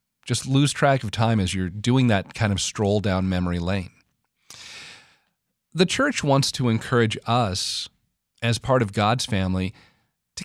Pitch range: 95-120 Hz